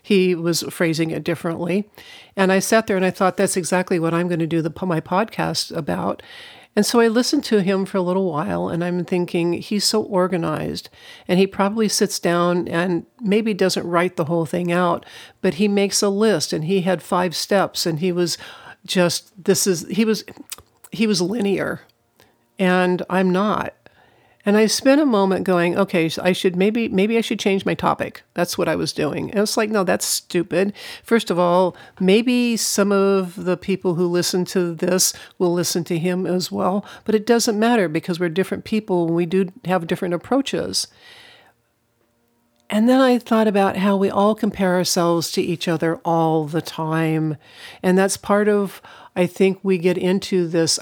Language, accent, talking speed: English, American, 190 wpm